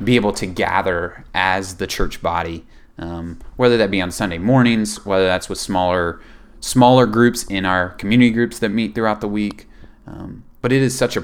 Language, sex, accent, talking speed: English, male, American, 190 wpm